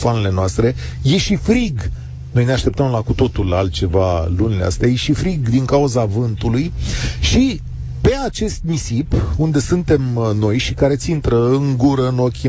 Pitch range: 110-150 Hz